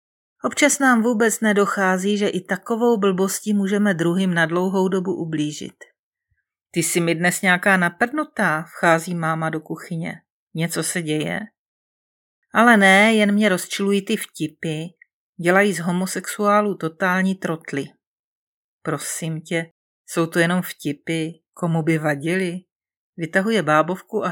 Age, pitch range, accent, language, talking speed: 40-59, 165-210 Hz, native, Czech, 125 wpm